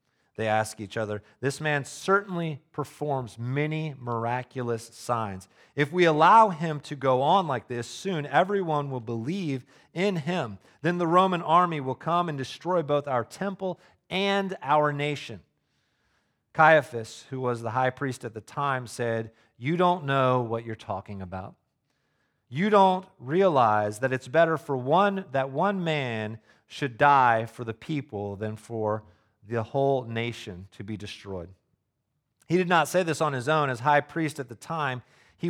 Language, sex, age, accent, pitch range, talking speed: English, male, 40-59, American, 115-155 Hz, 160 wpm